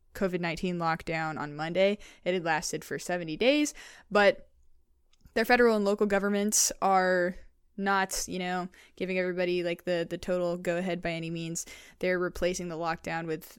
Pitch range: 160-185 Hz